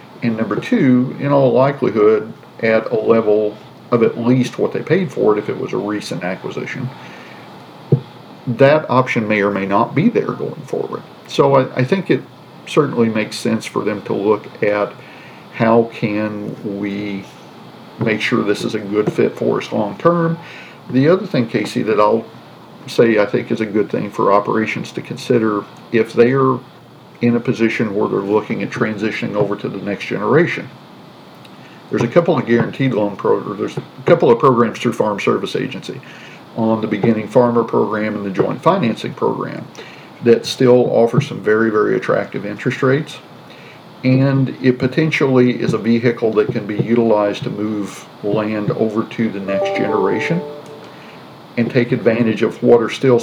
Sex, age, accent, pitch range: male, 50-69, American, 105-125 Hz